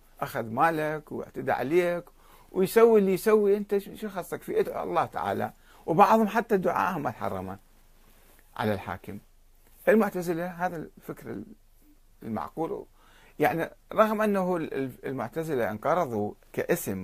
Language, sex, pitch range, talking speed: Arabic, male, 110-180 Hz, 100 wpm